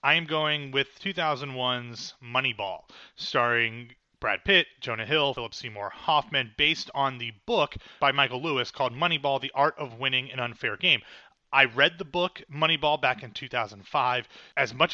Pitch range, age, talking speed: 120-150 Hz, 30-49, 160 wpm